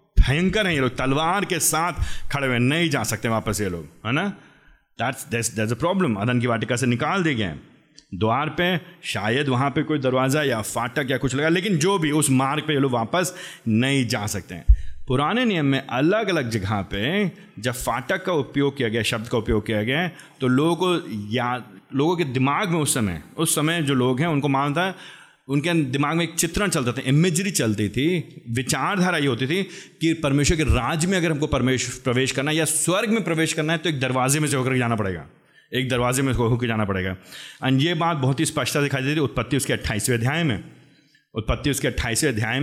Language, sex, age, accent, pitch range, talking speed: Hindi, male, 30-49, native, 120-160 Hz, 215 wpm